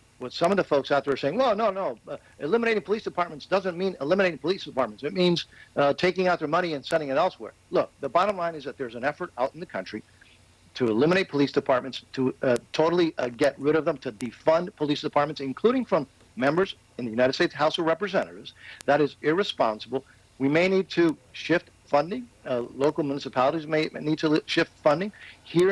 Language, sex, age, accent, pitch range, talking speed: English, male, 50-69, American, 130-170 Hz, 210 wpm